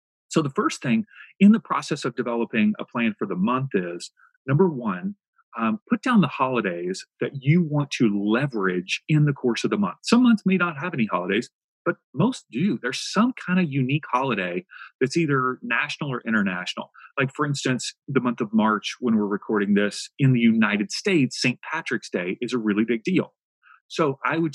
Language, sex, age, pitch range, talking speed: English, male, 40-59, 120-185 Hz, 195 wpm